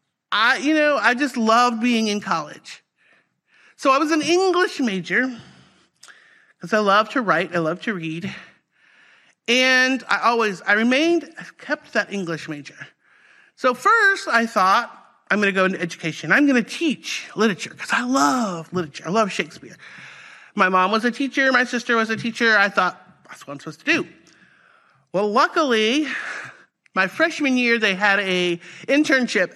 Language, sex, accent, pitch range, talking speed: English, male, American, 185-260 Hz, 170 wpm